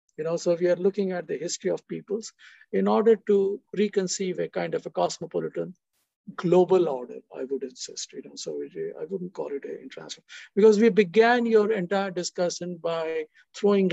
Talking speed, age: 180 wpm, 50-69